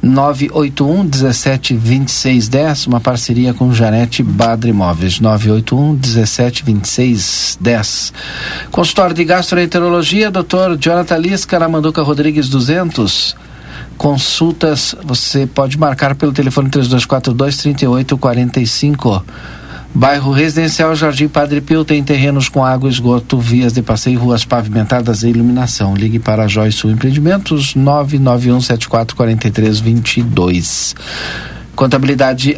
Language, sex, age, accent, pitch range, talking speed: Portuguese, male, 50-69, Brazilian, 120-150 Hz, 85 wpm